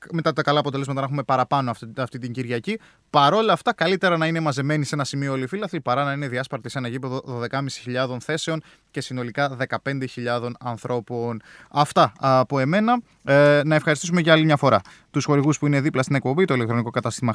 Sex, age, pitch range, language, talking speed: male, 20-39, 125-150 Hz, Greek, 195 wpm